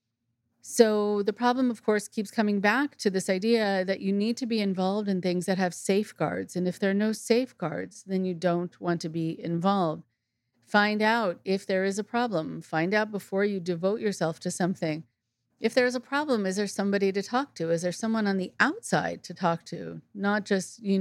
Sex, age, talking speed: female, 40-59, 210 wpm